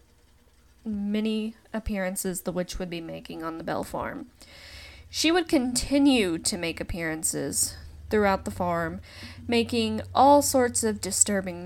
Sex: female